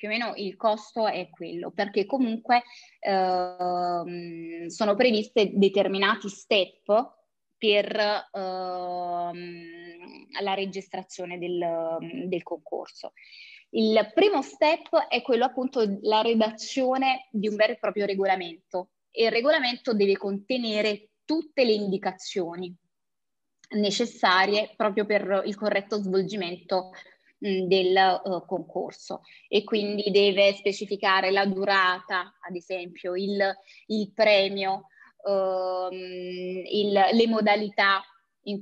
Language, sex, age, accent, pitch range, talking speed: Italian, female, 20-39, native, 185-225 Hz, 105 wpm